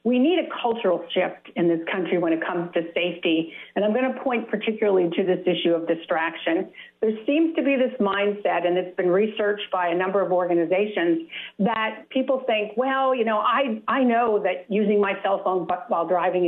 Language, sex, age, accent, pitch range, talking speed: English, female, 50-69, American, 180-235 Hz, 200 wpm